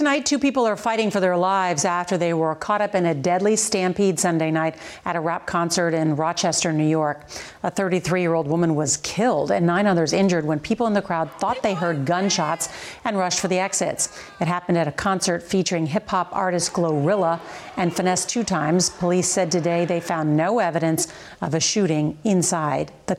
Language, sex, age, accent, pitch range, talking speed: English, female, 40-59, American, 165-205 Hz, 195 wpm